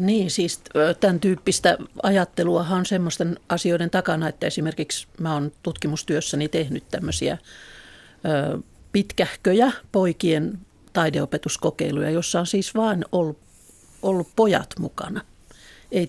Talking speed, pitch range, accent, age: 100 wpm, 160-200 Hz, native, 50-69